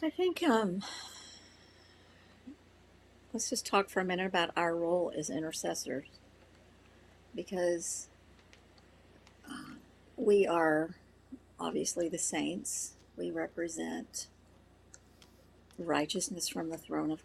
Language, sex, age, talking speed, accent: English, female, 50-69, 95 wpm, American